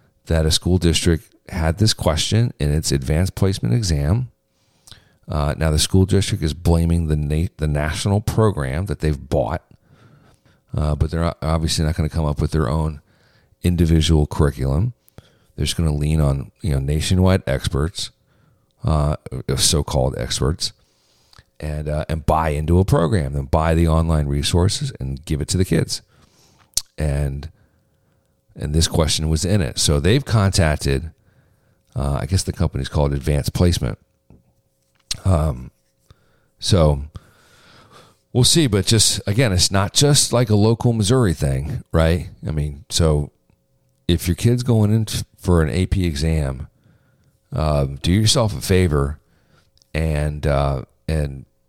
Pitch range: 75-95 Hz